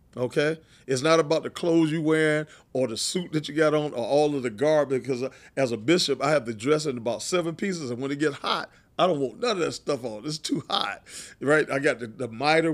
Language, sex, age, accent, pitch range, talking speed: English, male, 40-59, American, 125-155 Hz, 255 wpm